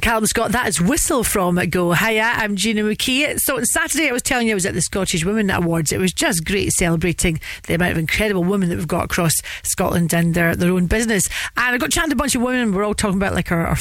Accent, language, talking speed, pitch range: British, English, 260 wpm, 175-225 Hz